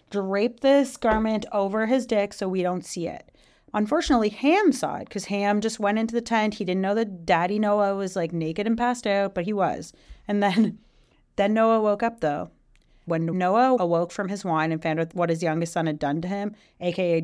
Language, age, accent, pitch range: English, 30-49, American, 170-215 Hz